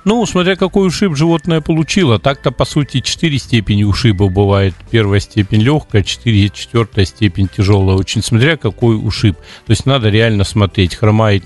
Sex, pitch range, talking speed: male, 95-115 Hz, 155 wpm